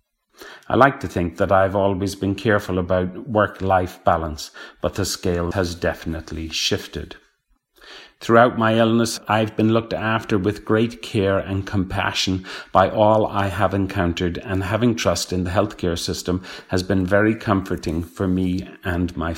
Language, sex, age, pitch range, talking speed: English, male, 40-59, 90-110 Hz, 155 wpm